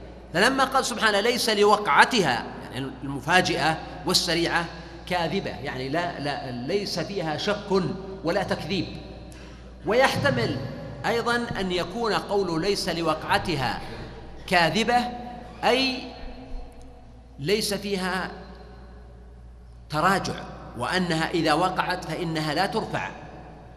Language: Arabic